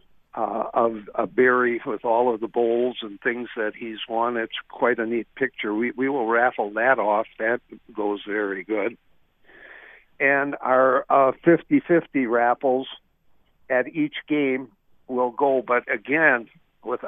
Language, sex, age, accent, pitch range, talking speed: English, male, 60-79, American, 115-135 Hz, 150 wpm